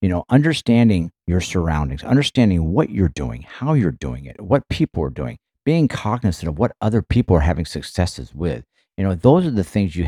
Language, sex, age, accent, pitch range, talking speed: English, male, 50-69, American, 85-110 Hz, 200 wpm